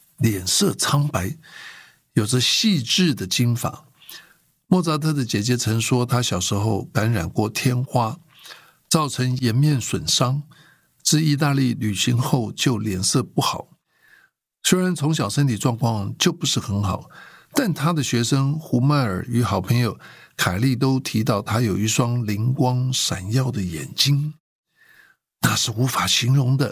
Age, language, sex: 60-79, Chinese, male